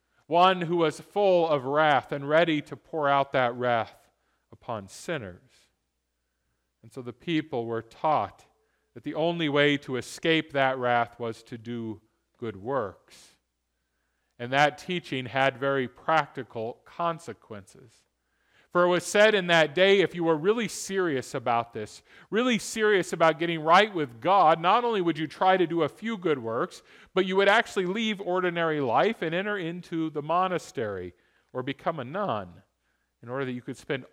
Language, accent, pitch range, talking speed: English, American, 120-165 Hz, 165 wpm